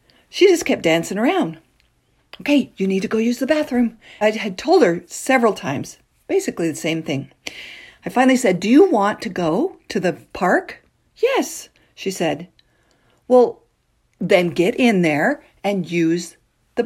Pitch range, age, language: 165-255 Hz, 50-69, English